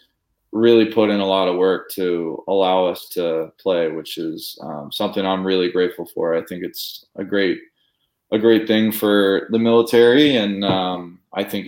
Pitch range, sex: 90-110 Hz, male